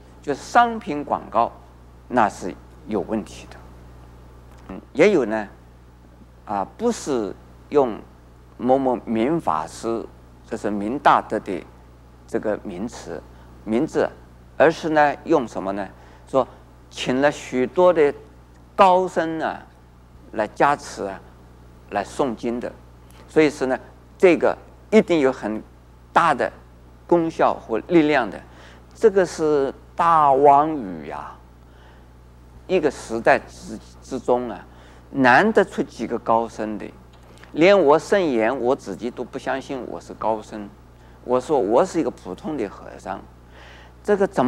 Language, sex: Chinese, male